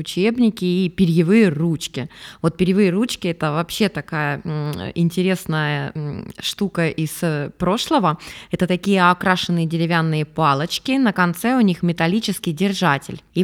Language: Russian